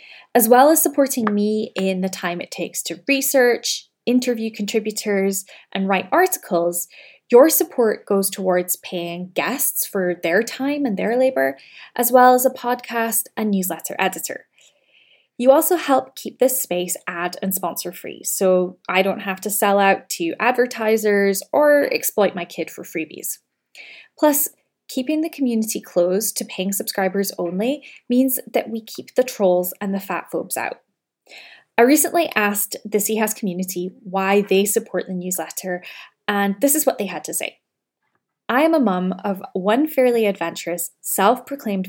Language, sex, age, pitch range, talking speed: English, female, 10-29, 185-255 Hz, 160 wpm